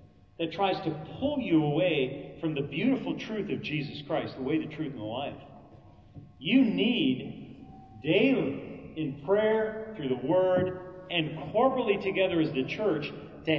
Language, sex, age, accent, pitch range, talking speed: English, male, 40-59, American, 130-195 Hz, 155 wpm